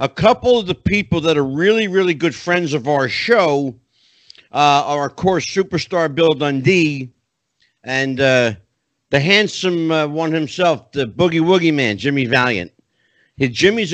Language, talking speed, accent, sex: English, 150 wpm, American, male